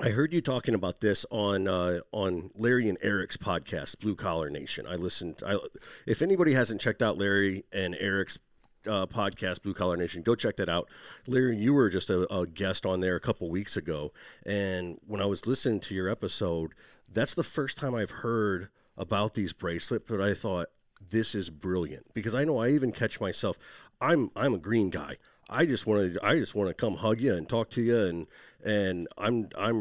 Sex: male